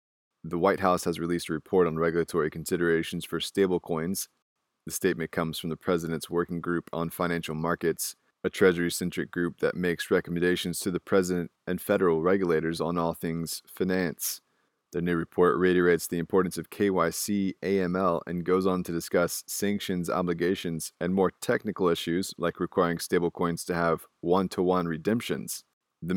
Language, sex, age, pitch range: English, male, 20-39, 85-90 Hz